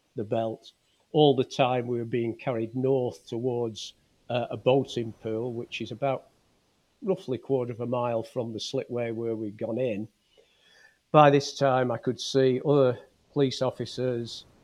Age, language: 50-69, English